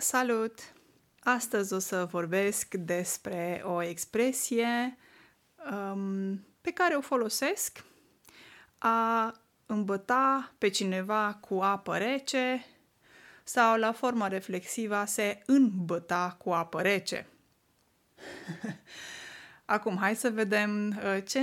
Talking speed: 95 wpm